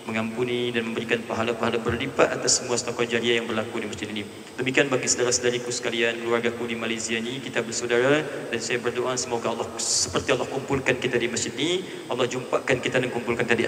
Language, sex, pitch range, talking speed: Indonesian, male, 100-115 Hz, 190 wpm